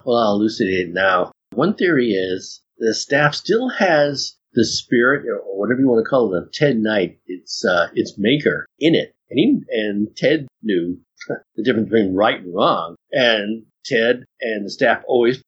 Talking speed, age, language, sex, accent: 180 wpm, 50-69, English, male, American